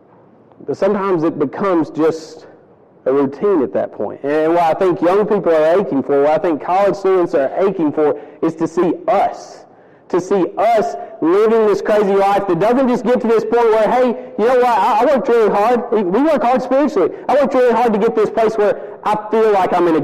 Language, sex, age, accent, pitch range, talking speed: English, male, 30-49, American, 140-205 Hz, 220 wpm